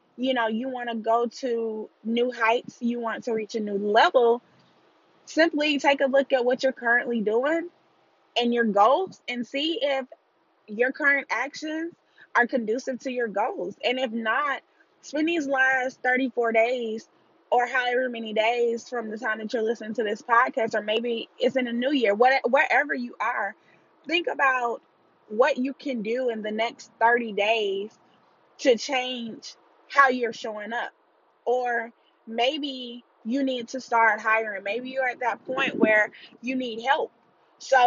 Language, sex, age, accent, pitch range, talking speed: English, female, 20-39, American, 220-255 Hz, 165 wpm